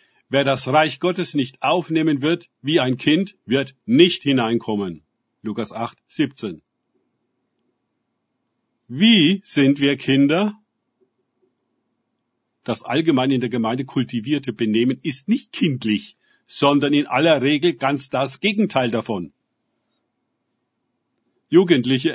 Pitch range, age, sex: 125-160 Hz, 50-69, male